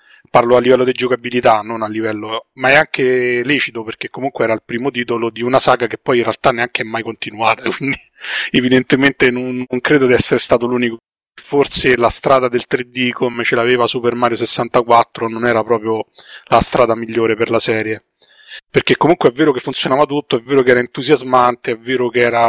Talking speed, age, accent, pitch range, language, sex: 195 wpm, 30-49, native, 115-125 Hz, Italian, male